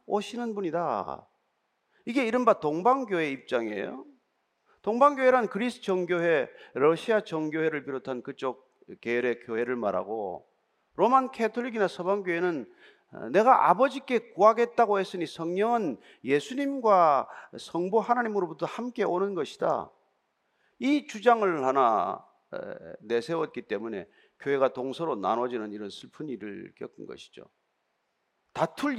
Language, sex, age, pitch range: Korean, male, 40-59, 165-265 Hz